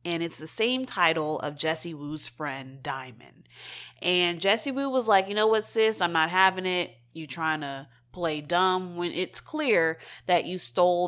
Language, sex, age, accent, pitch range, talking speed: English, female, 30-49, American, 145-195 Hz, 185 wpm